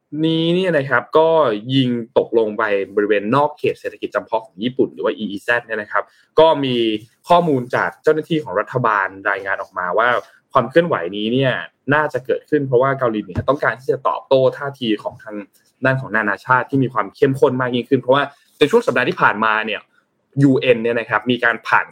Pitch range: 115-165 Hz